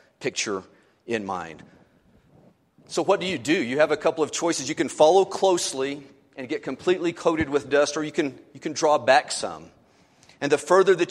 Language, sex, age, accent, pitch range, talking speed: English, male, 40-59, American, 120-160 Hz, 195 wpm